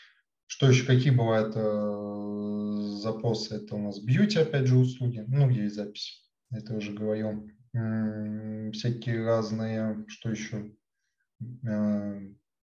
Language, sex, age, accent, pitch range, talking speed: Russian, male, 20-39, native, 105-125 Hz, 110 wpm